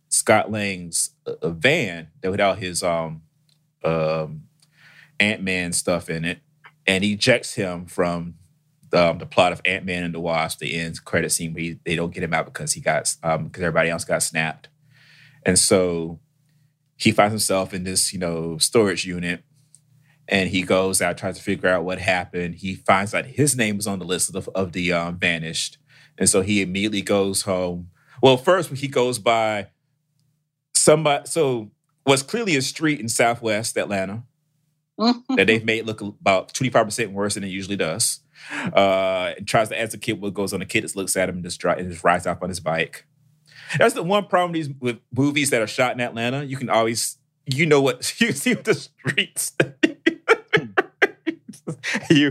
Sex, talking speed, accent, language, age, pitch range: male, 190 wpm, American, English, 30-49, 95-150 Hz